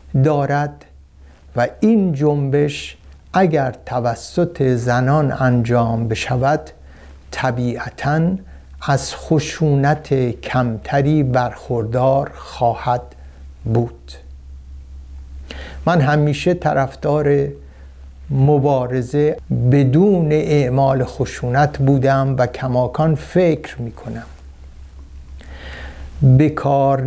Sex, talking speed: male, 65 wpm